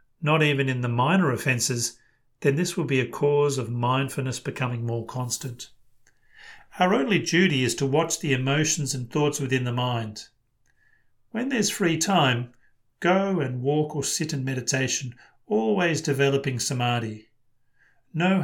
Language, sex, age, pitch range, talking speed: English, male, 40-59, 125-155 Hz, 145 wpm